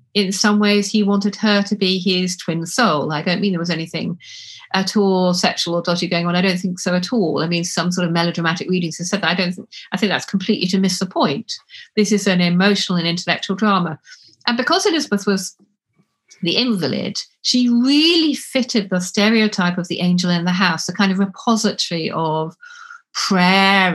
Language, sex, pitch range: English, female, 175-220 Hz